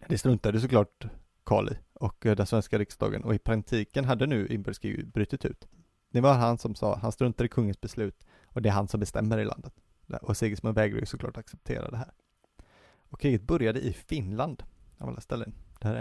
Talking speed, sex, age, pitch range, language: 185 wpm, male, 30-49, 105-130 Hz, Swedish